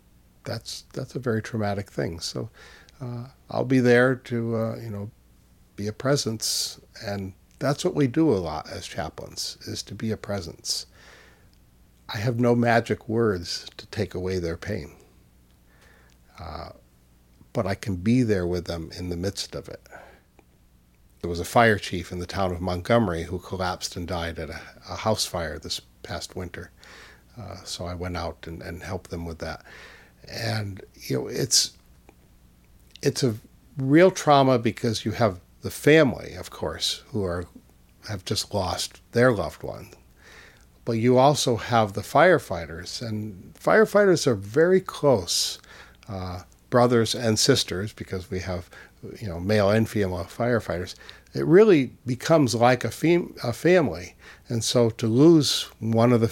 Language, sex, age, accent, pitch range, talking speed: English, male, 60-79, American, 90-120 Hz, 160 wpm